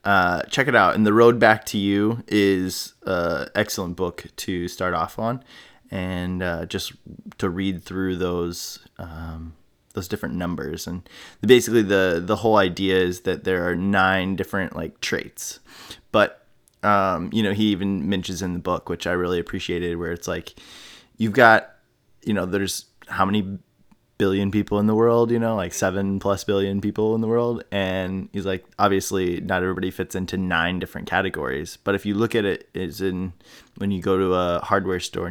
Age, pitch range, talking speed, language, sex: 20-39, 90-100 Hz, 185 wpm, English, male